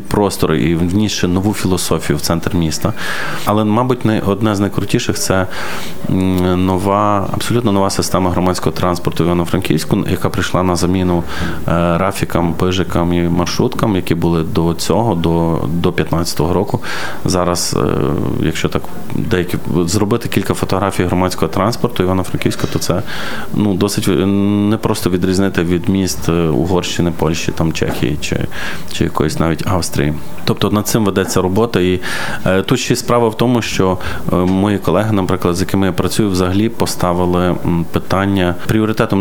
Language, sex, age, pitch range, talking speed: Ukrainian, male, 20-39, 90-100 Hz, 140 wpm